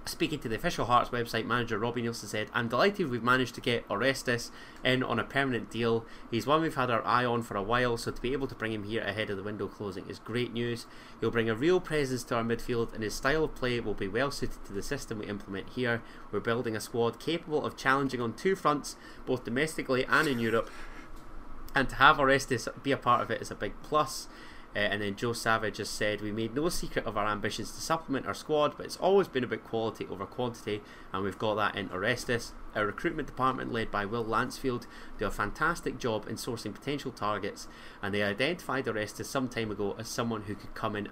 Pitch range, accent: 105-130 Hz, British